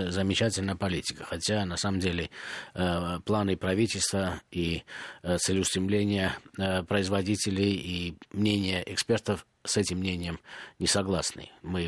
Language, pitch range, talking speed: Russian, 90-110 Hz, 100 wpm